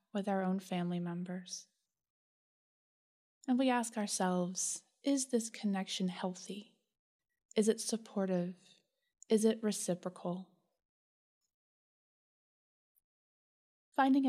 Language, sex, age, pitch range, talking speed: English, female, 20-39, 185-230 Hz, 85 wpm